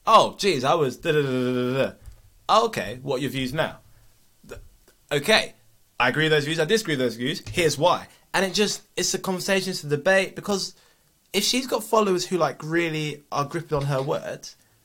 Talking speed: 200 wpm